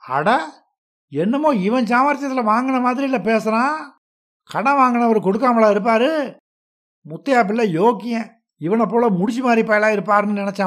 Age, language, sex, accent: 60-79, Tamil, male, native